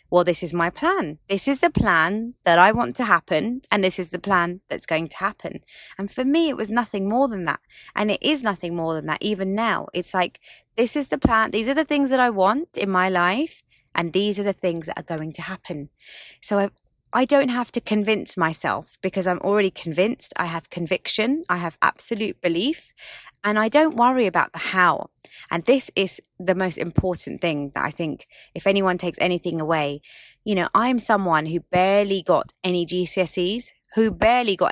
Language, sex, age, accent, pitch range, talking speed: English, female, 20-39, British, 155-205 Hz, 205 wpm